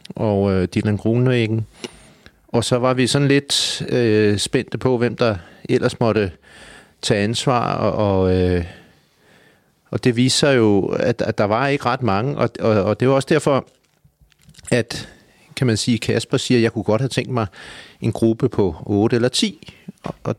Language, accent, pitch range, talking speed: Danish, native, 105-130 Hz, 175 wpm